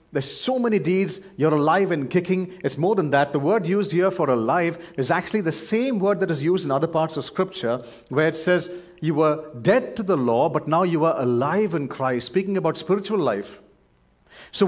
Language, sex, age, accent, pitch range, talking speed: English, male, 40-59, Indian, 130-175 Hz, 215 wpm